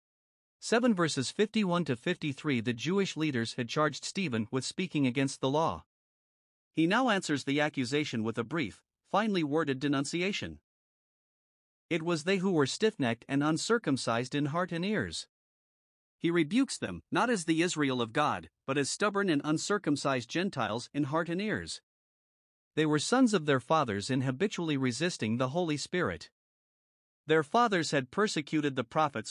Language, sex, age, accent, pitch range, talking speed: English, male, 50-69, American, 135-180 Hz, 155 wpm